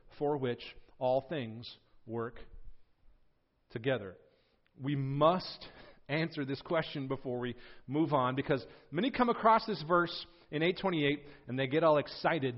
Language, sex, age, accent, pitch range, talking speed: English, male, 40-59, American, 130-180 Hz, 135 wpm